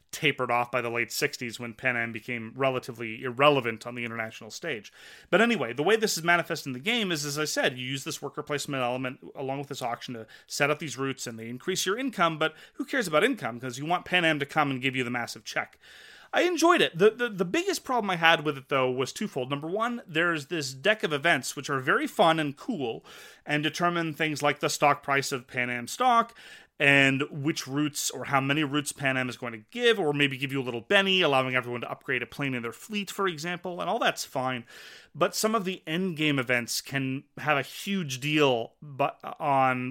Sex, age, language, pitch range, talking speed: male, 30-49, English, 130-170 Hz, 235 wpm